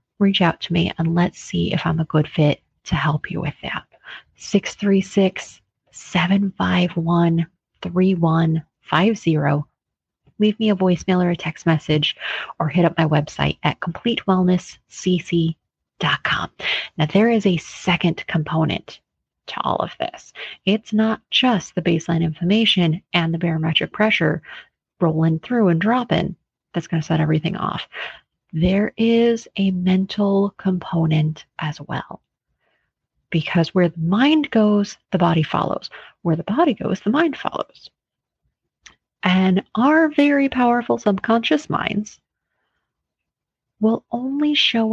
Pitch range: 165-215 Hz